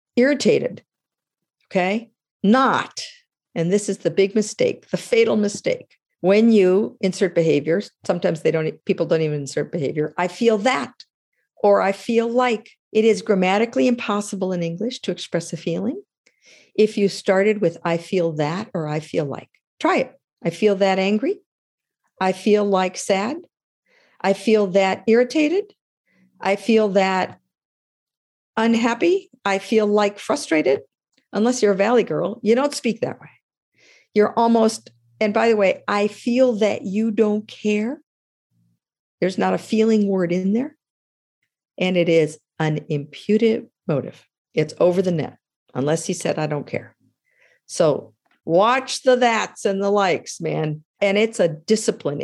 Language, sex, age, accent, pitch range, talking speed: English, female, 50-69, American, 175-225 Hz, 150 wpm